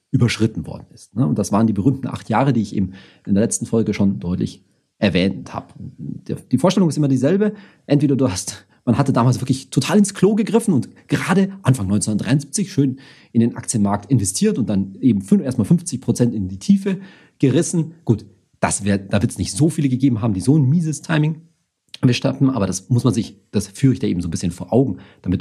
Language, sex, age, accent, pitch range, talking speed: German, male, 40-59, German, 100-140 Hz, 210 wpm